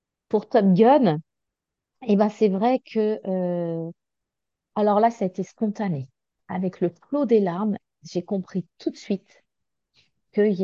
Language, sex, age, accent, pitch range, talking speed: French, female, 40-59, French, 180-225 Hz, 145 wpm